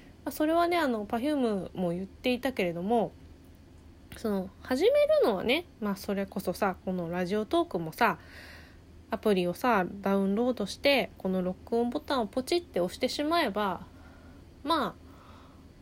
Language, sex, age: Japanese, female, 20-39